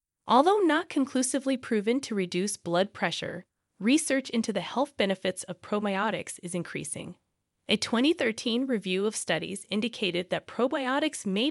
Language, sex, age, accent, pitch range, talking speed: English, female, 20-39, American, 185-255 Hz, 135 wpm